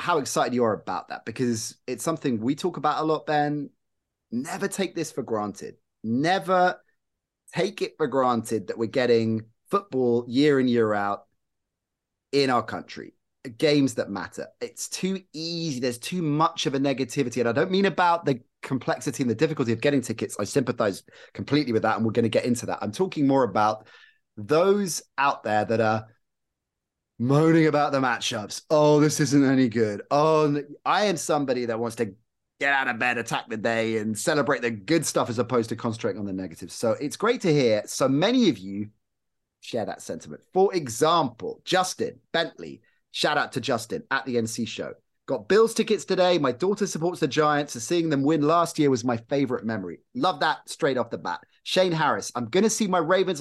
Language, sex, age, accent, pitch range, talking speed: English, male, 30-49, British, 115-165 Hz, 195 wpm